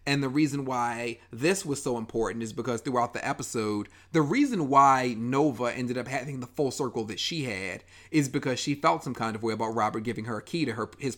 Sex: male